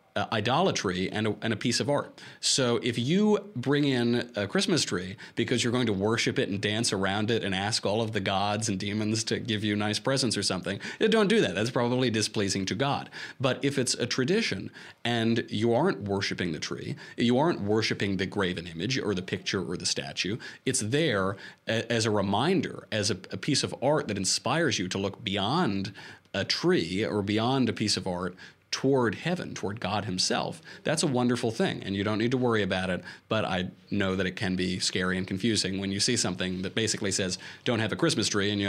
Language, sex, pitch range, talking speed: English, male, 100-125 Hz, 215 wpm